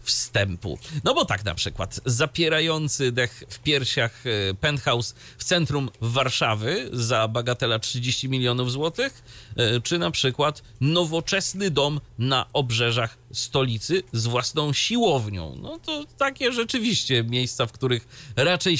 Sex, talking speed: male, 120 wpm